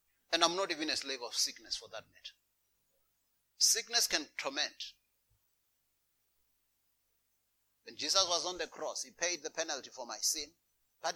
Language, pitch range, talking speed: English, 155-210 Hz, 150 wpm